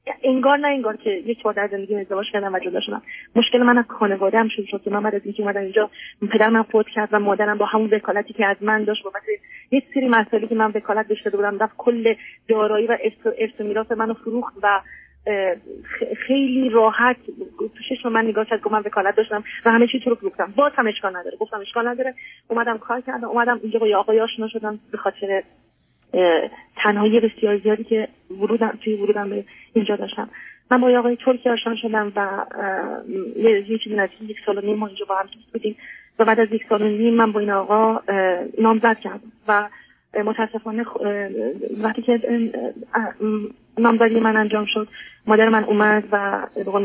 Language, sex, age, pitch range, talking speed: Persian, female, 30-49, 205-235 Hz, 180 wpm